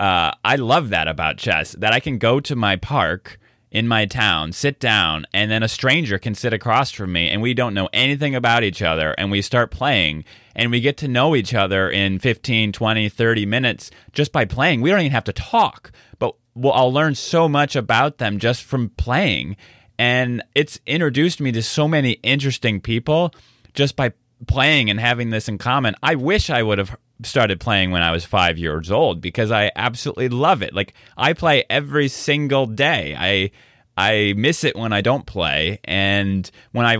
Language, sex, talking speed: English, male, 200 wpm